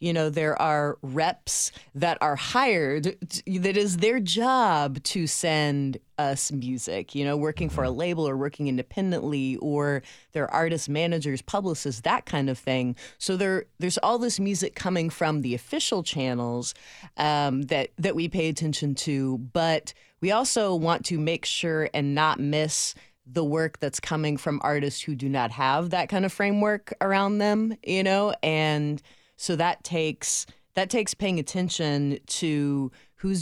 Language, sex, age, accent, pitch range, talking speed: English, female, 30-49, American, 135-175 Hz, 165 wpm